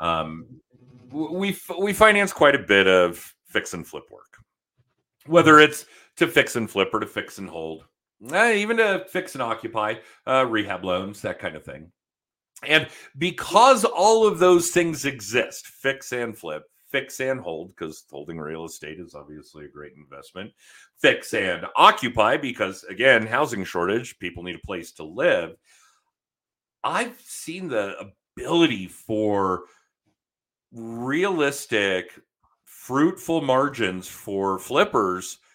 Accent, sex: American, male